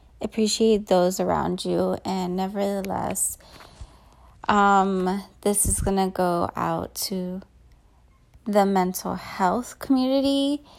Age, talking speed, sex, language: 20-39, 100 wpm, female, English